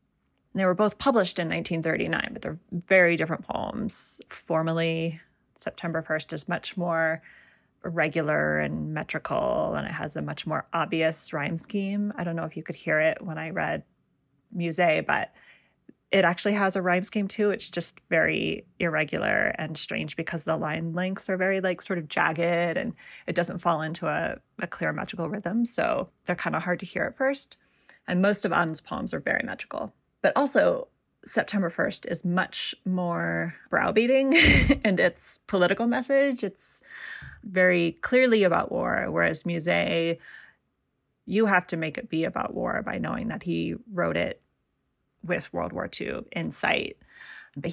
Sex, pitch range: female, 165-210 Hz